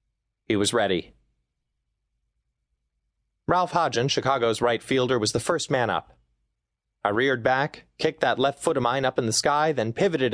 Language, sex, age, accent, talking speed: English, male, 30-49, American, 165 wpm